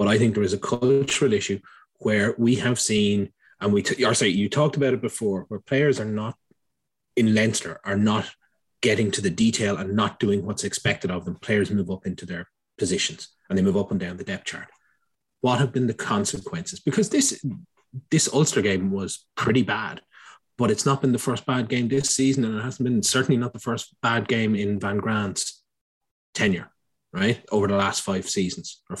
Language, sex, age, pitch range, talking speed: English, male, 30-49, 100-135 Hz, 205 wpm